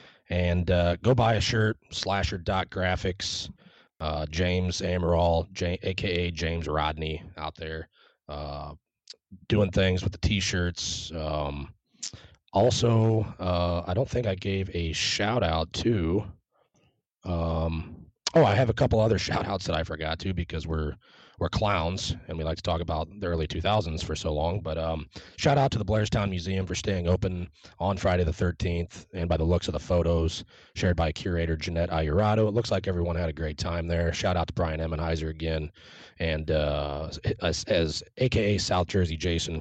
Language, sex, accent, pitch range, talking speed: English, male, American, 80-100 Hz, 165 wpm